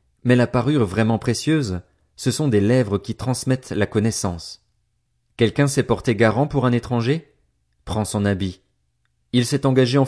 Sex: male